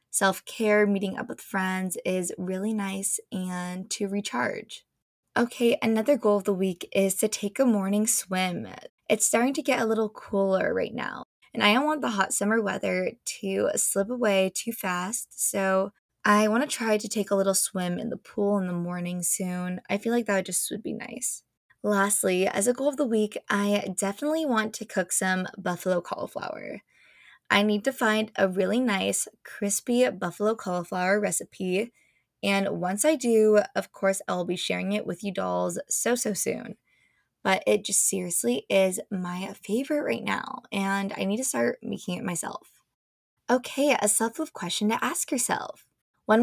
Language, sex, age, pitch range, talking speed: English, female, 20-39, 190-225 Hz, 175 wpm